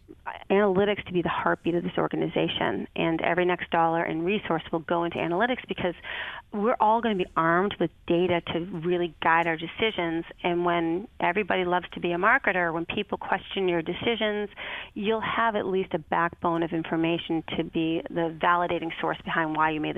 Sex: female